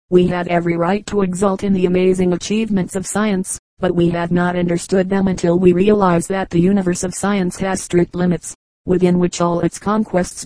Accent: American